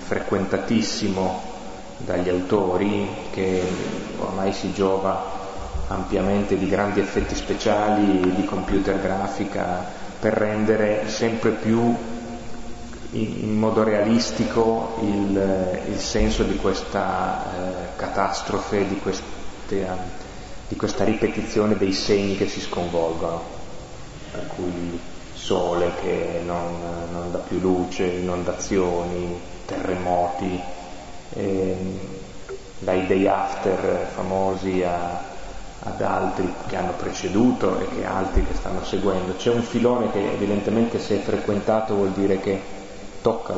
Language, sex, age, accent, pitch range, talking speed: Italian, male, 30-49, native, 90-105 Hz, 105 wpm